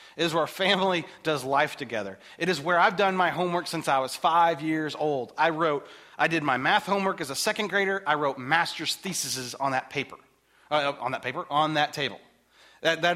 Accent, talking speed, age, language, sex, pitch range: American, 220 wpm, 30-49, English, male, 140-190 Hz